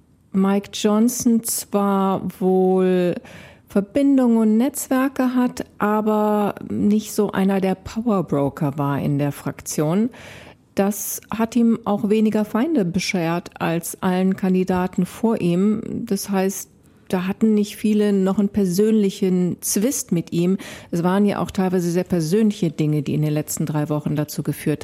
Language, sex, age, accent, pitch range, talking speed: German, female, 40-59, German, 170-215 Hz, 140 wpm